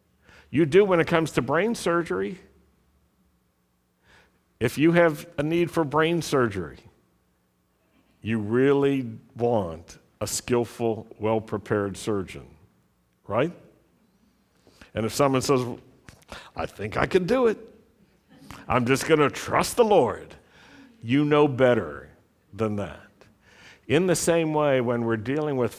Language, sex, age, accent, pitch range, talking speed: English, male, 60-79, American, 100-145 Hz, 125 wpm